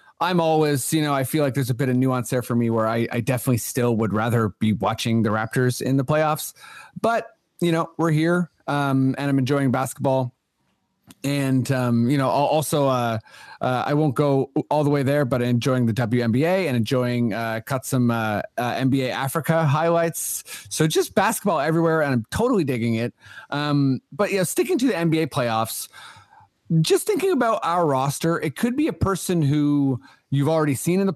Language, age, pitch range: English, 30-49, 125-165 Hz